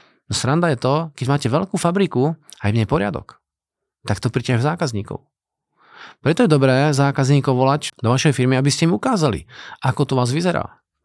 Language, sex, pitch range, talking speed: Slovak, male, 125-150 Hz, 180 wpm